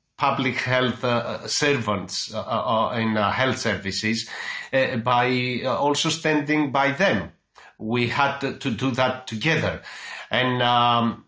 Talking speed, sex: 130 wpm, male